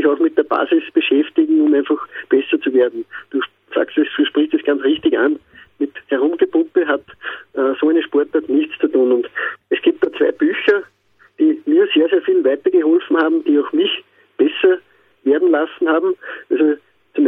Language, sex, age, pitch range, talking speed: German, male, 50-69, 305-375 Hz, 170 wpm